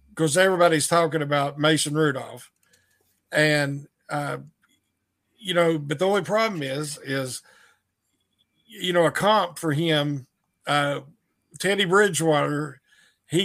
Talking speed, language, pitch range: 115 wpm, English, 140-175 Hz